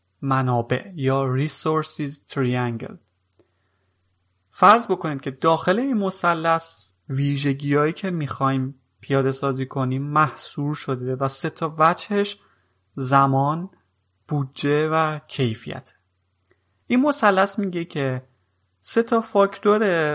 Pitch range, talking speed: 130-165 Hz, 95 wpm